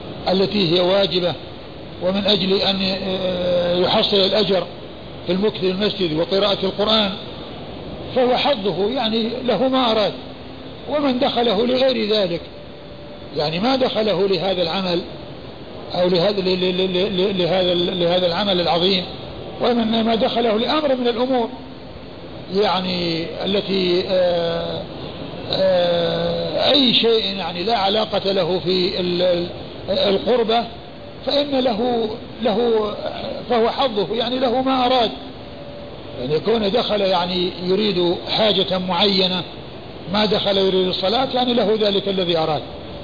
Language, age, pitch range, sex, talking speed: Arabic, 50-69, 180-220 Hz, male, 105 wpm